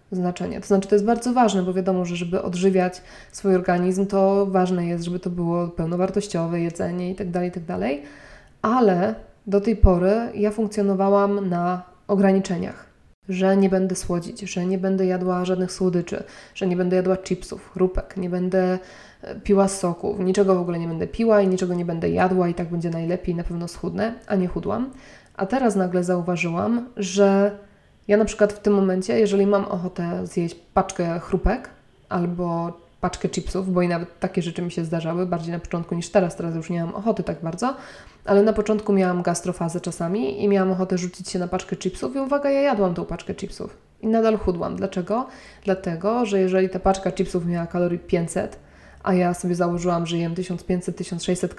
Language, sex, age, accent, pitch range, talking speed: Polish, female, 20-39, native, 175-200 Hz, 185 wpm